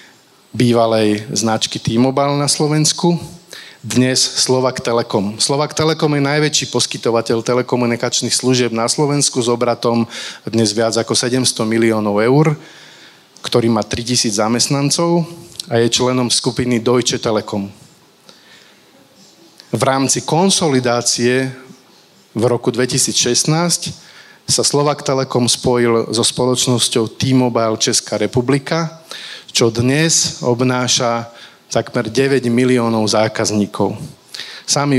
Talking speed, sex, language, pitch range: 100 wpm, male, Slovak, 115-135 Hz